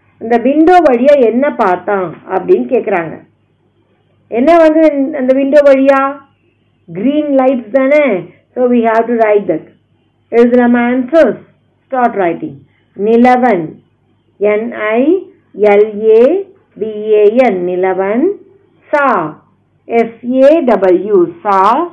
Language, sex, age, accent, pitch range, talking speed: Tamil, female, 50-69, native, 210-300 Hz, 50 wpm